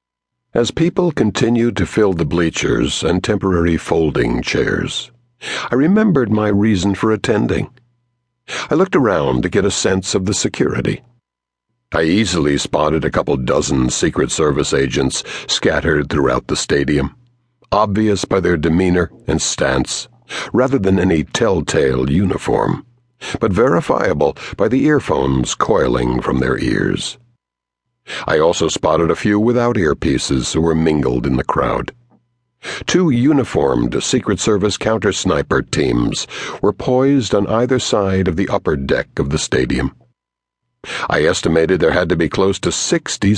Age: 60-79